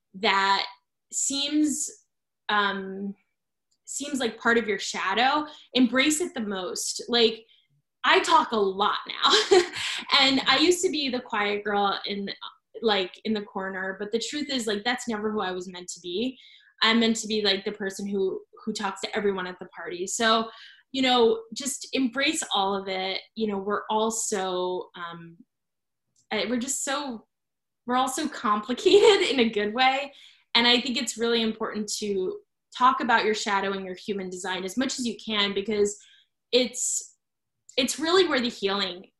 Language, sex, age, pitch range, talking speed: English, female, 10-29, 195-255 Hz, 170 wpm